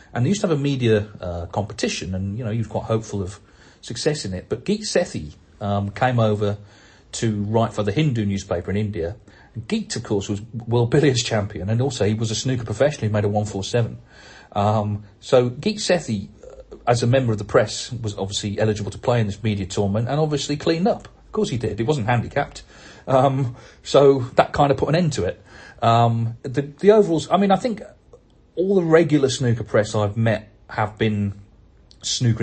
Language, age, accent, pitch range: English, 40-59, British, 100-125 Hz